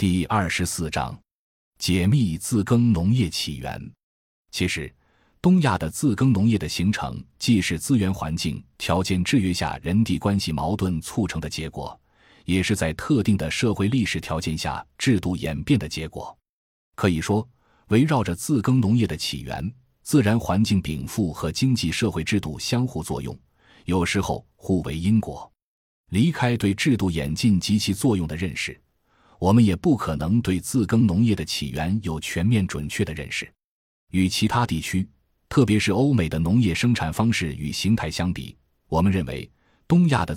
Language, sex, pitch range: Chinese, male, 80-115 Hz